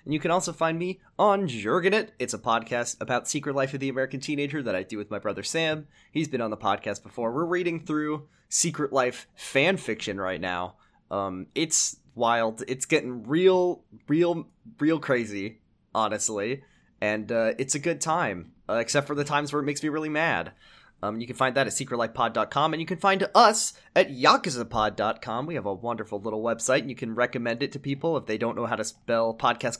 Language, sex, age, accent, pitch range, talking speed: English, male, 20-39, American, 115-160 Hz, 205 wpm